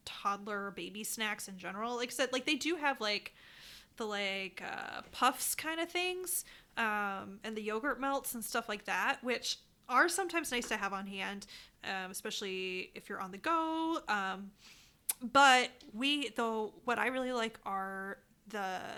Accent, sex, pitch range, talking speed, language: American, female, 200-260 Hz, 170 wpm, English